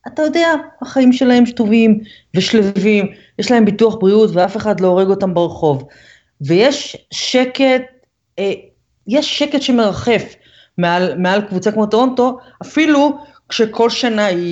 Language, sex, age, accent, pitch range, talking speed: Hebrew, female, 30-49, native, 165-245 Hz, 125 wpm